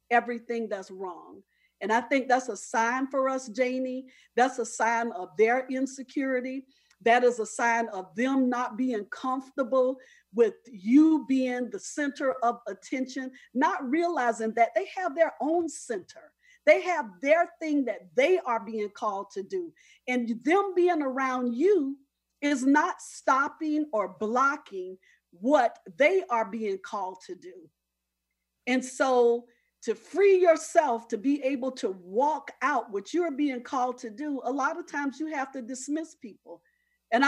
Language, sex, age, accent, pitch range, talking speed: English, female, 40-59, American, 235-315 Hz, 160 wpm